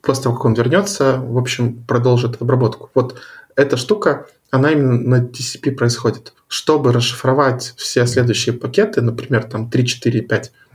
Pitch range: 120-140 Hz